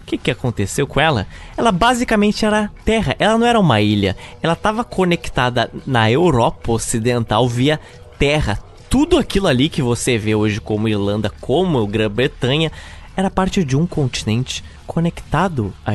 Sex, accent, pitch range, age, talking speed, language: male, Brazilian, 110-175 Hz, 20-39, 150 wpm, Portuguese